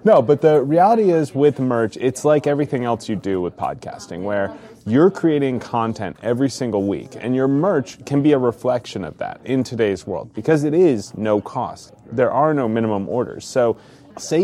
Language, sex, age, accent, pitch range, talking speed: English, male, 30-49, American, 115-150 Hz, 190 wpm